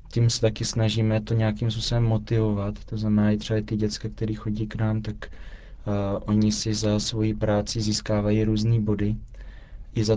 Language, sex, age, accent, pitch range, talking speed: Czech, male, 20-39, native, 105-110 Hz, 175 wpm